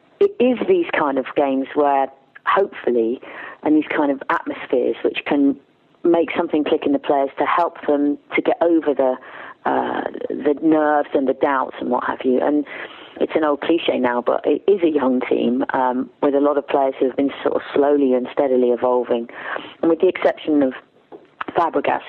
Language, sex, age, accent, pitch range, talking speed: English, female, 30-49, British, 130-180 Hz, 195 wpm